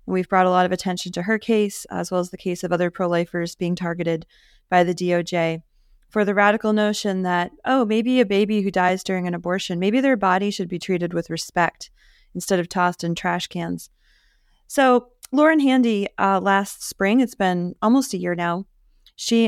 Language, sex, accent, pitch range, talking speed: English, female, American, 175-220 Hz, 190 wpm